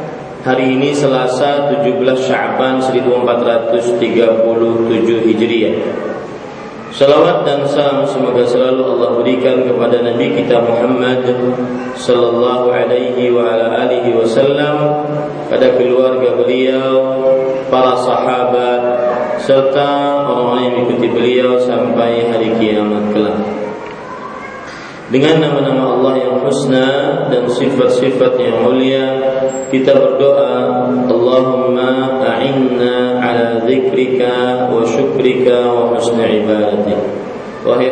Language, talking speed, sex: Malay, 90 wpm, male